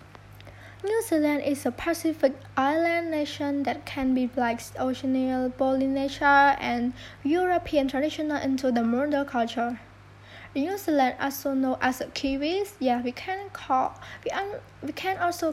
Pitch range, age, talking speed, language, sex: 245-305 Hz, 10-29, 140 wpm, English, female